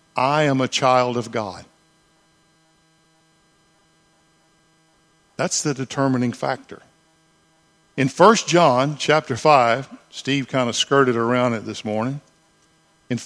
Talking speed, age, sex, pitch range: 110 wpm, 50-69, male, 130-160 Hz